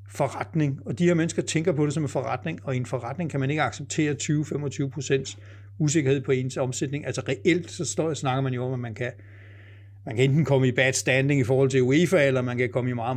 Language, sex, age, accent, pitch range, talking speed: Danish, male, 60-79, native, 115-155 Hz, 230 wpm